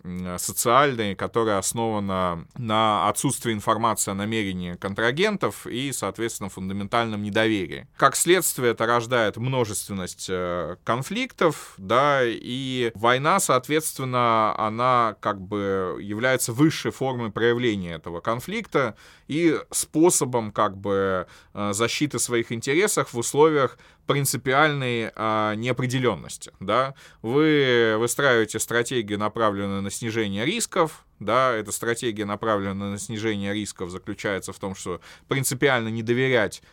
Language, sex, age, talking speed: Russian, male, 20-39, 110 wpm